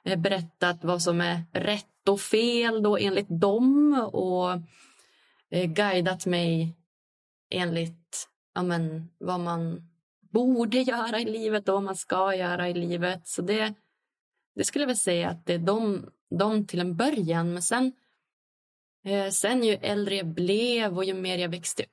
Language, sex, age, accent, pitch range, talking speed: English, female, 20-39, Swedish, 170-200 Hz, 155 wpm